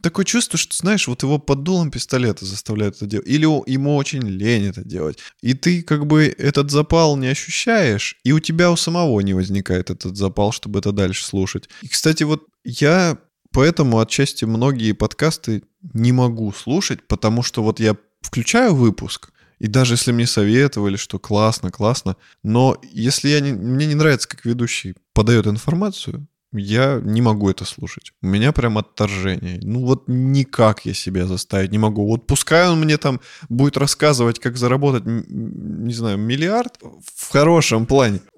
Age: 20-39